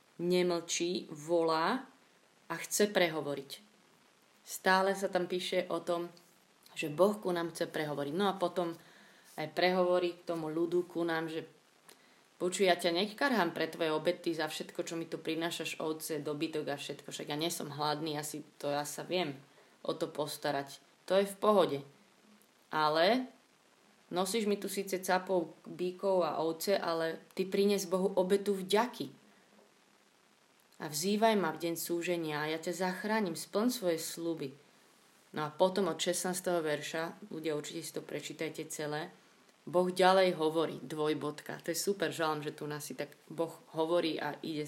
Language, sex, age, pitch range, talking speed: Slovak, female, 20-39, 155-185 Hz, 155 wpm